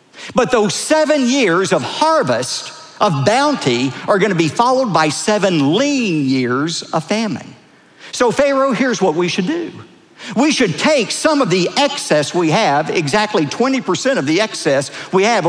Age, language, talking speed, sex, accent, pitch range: 50-69, English, 165 wpm, male, American, 185-260 Hz